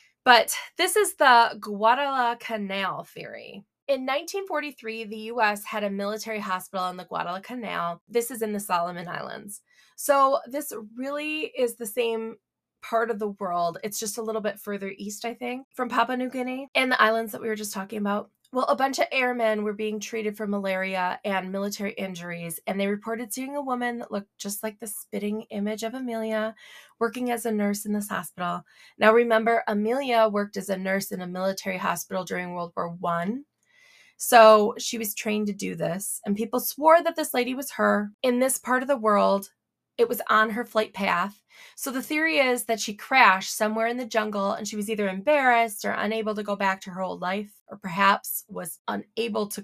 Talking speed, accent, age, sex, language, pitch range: 195 wpm, American, 20-39, female, English, 200-245 Hz